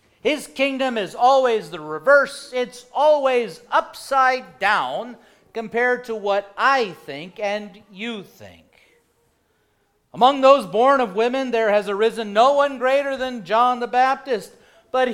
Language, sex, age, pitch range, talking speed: English, male, 50-69, 180-250 Hz, 135 wpm